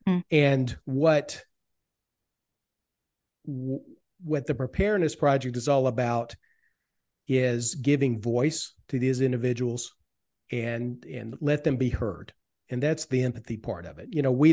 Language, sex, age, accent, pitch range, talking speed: English, male, 40-59, American, 120-145 Hz, 130 wpm